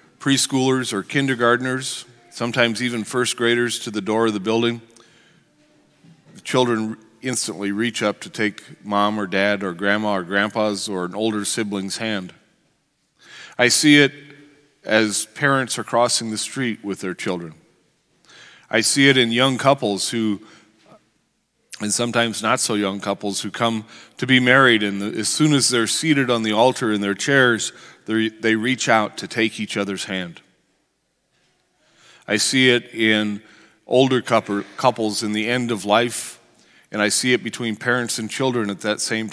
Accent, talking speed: American, 155 wpm